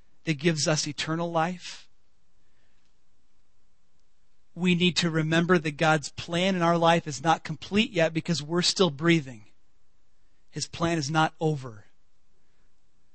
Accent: American